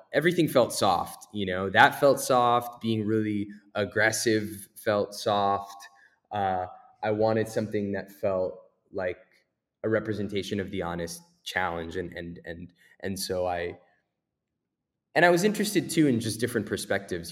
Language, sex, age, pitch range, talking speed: English, male, 20-39, 90-105 Hz, 140 wpm